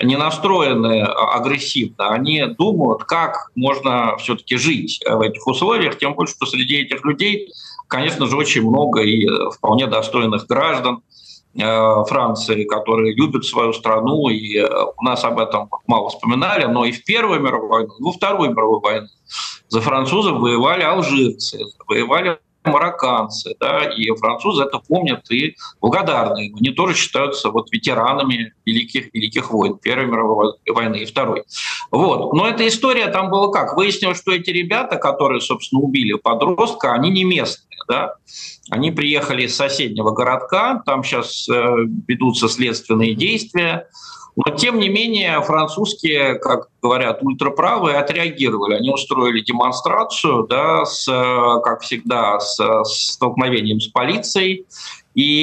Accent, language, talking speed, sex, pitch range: native, Russian, 135 wpm, male, 120-185 Hz